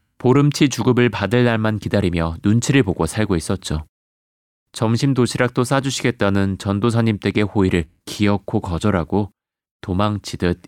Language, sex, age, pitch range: Korean, male, 30-49, 90-120 Hz